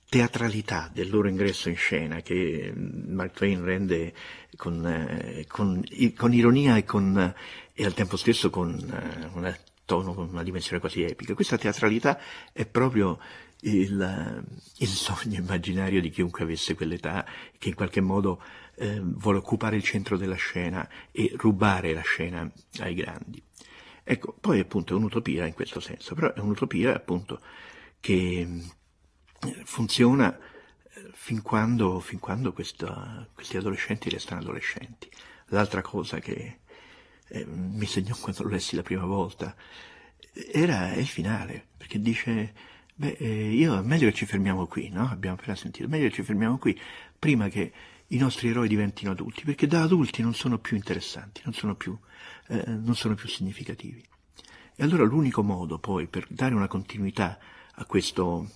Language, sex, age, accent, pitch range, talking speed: Italian, male, 50-69, native, 90-110 Hz, 150 wpm